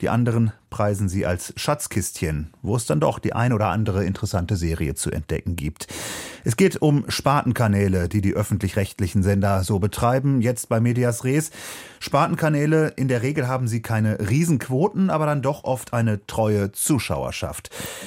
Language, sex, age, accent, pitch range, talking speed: German, male, 30-49, German, 100-125 Hz, 160 wpm